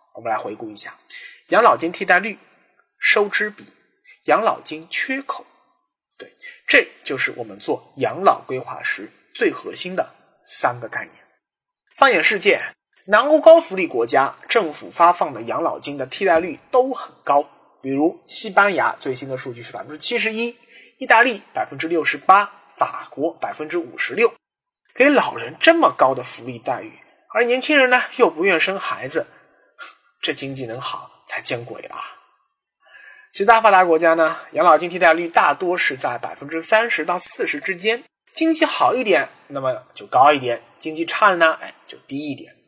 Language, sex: Chinese, male